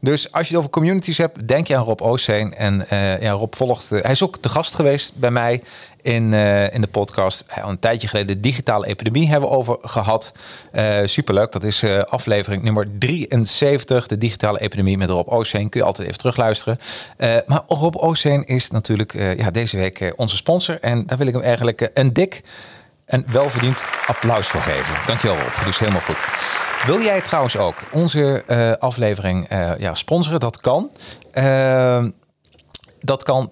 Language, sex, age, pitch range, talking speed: Dutch, male, 40-59, 100-135 Hz, 190 wpm